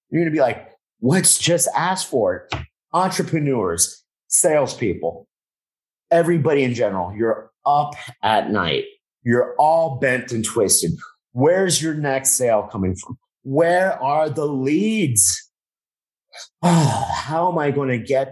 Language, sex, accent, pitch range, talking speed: English, male, American, 110-160 Hz, 130 wpm